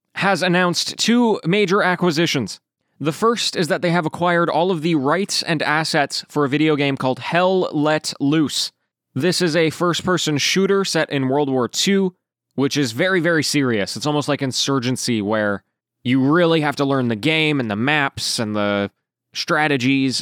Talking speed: 175 wpm